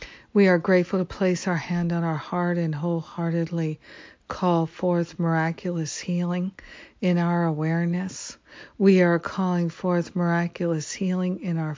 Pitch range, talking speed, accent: 165-180 Hz, 140 wpm, American